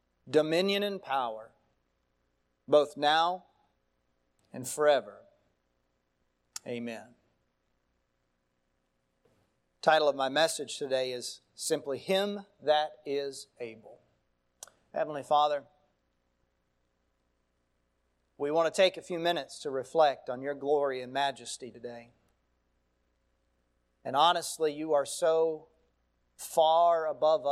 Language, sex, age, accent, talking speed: English, male, 40-59, American, 95 wpm